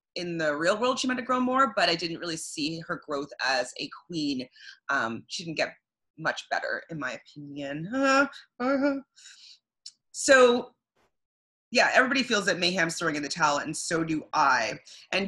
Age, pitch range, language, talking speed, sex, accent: 30-49, 165-265 Hz, English, 175 wpm, female, American